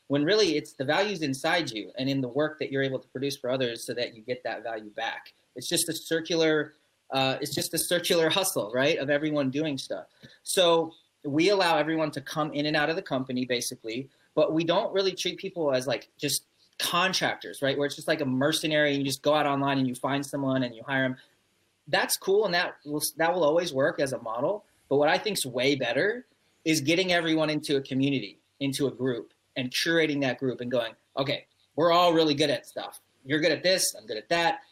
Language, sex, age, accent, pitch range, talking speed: English, male, 30-49, American, 130-160 Hz, 230 wpm